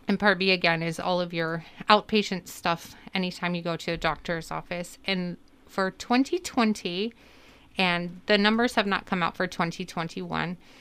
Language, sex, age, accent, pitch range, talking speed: English, female, 30-49, American, 170-225 Hz, 160 wpm